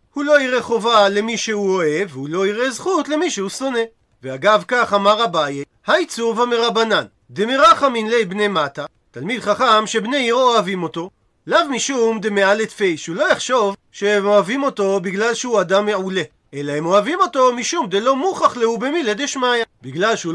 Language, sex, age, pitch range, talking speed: Hebrew, male, 40-59, 195-255 Hz, 150 wpm